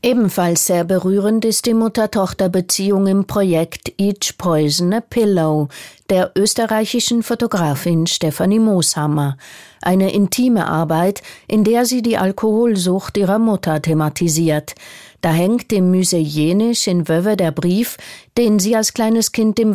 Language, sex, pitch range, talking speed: German, female, 165-215 Hz, 130 wpm